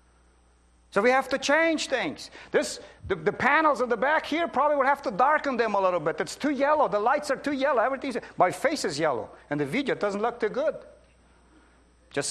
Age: 50-69